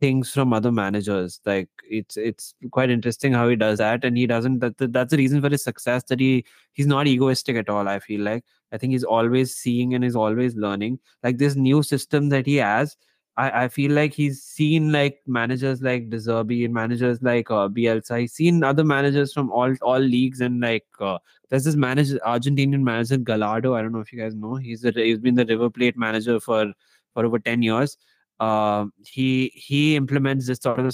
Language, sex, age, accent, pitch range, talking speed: English, male, 20-39, Indian, 115-140 Hz, 210 wpm